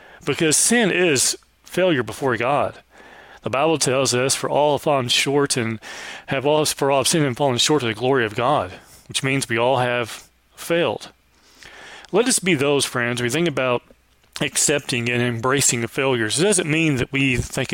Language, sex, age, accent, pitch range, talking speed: English, male, 40-59, American, 120-145 Hz, 185 wpm